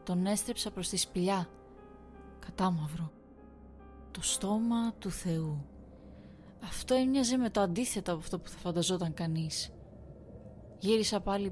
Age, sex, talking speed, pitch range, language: 20-39, female, 120 wpm, 175-220 Hz, Greek